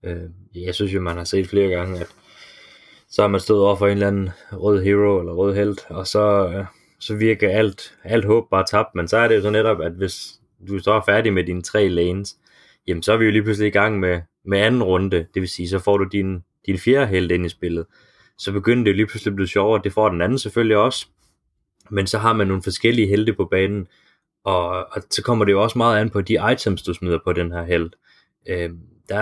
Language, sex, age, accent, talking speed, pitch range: Danish, male, 20-39, native, 240 wpm, 90-110 Hz